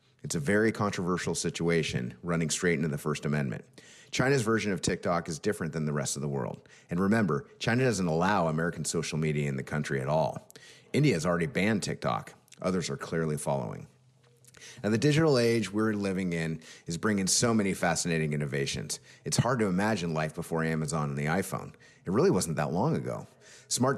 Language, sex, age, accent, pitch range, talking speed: English, male, 30-49, American, 75-100 Hz, 190 wpm